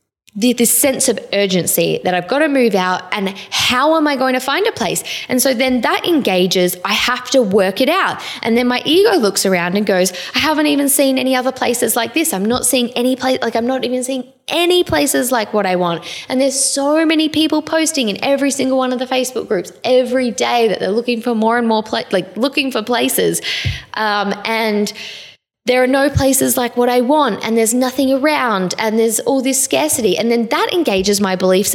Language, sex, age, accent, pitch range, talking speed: English, female, 10-29, Australian, 195-265 Hz, 215 wpm